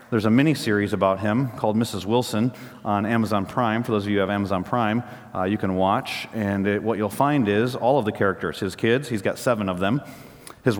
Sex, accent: male, American